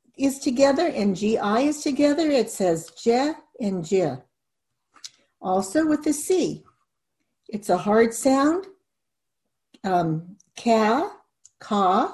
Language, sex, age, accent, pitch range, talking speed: English, female, 60-79, American, 205-285 Hz, 110 wpm